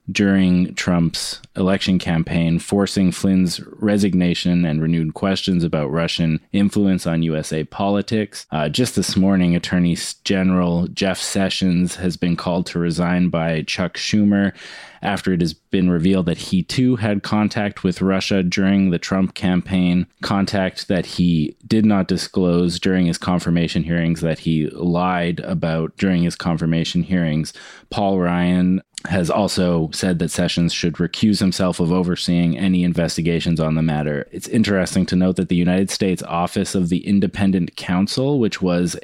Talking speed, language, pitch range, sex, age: 150 wpm, English, 85-100 Hz, male, 20-39